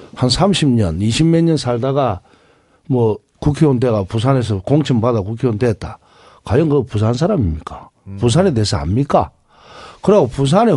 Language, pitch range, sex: Korean, 115-185 Hz, male